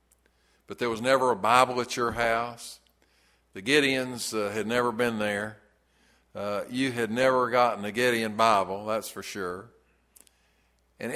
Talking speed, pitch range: 150 wpm, 110-170 Hz